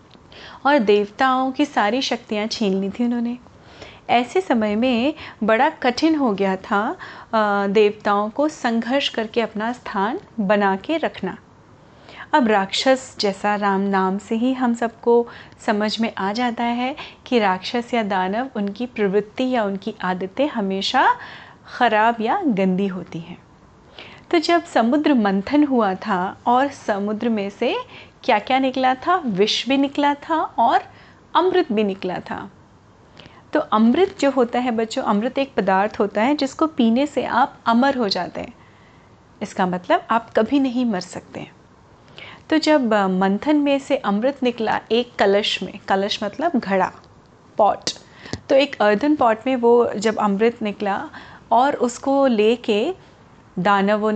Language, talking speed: Hindi, 145 wpm